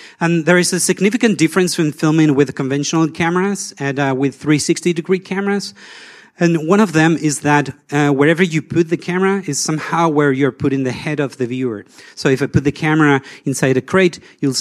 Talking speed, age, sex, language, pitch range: 195 wpm, 30-49, male, English, 130-160 Hz